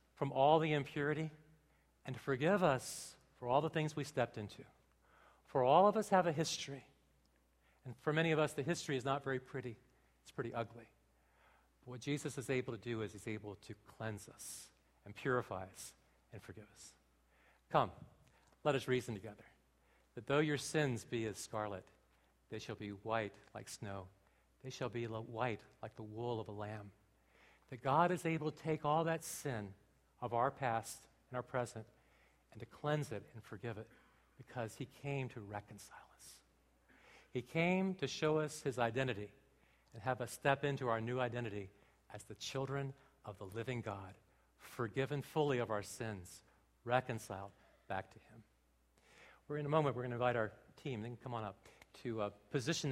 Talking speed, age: 180 wpm, 50-69